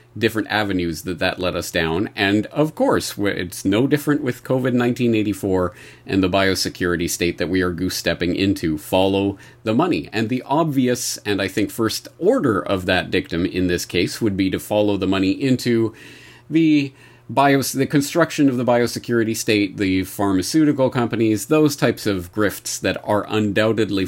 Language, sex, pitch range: English, male, 90-135 Hz